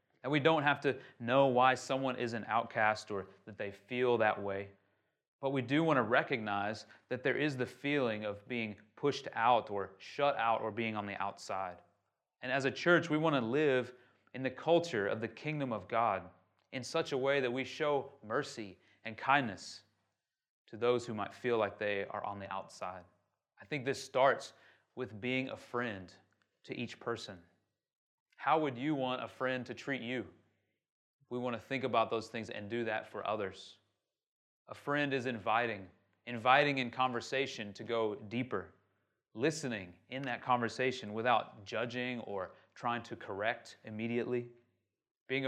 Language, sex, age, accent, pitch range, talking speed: English, male, 30-49, American, 105-135 Hz, 175 wpm